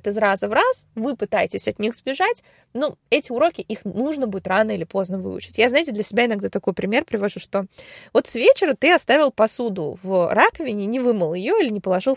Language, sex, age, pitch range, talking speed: Russian, female, 20-39, 210-275 Hz, 205 wpm